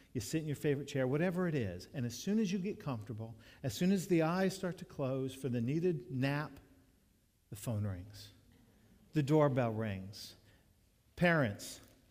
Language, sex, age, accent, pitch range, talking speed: English, male, 50-69, American, 115-180 Hz, 175 wpm